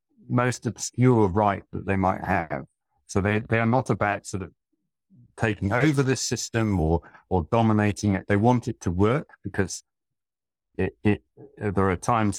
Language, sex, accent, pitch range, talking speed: English, male, British, 90-105 Hz, 165 wpm